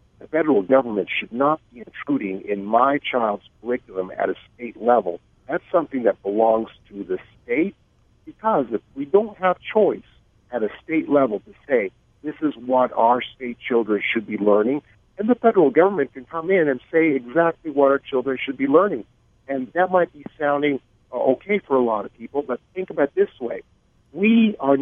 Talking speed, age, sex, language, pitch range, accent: 190 wpm, 50-69, male, English, 110-155 Hz, American